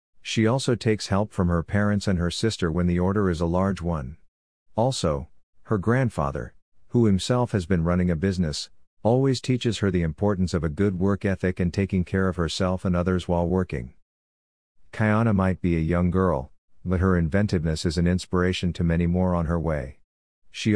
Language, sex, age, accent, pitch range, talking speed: English, male, 50-69, American, 85-100 Hz, 190 wpm